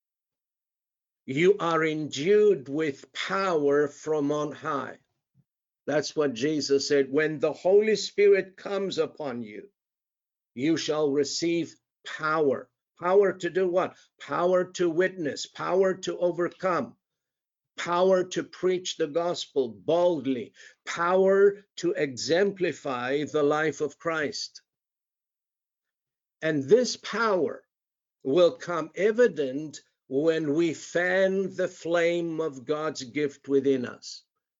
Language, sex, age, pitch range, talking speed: English, male, 50-69, 145-185 Hz, 110 wpm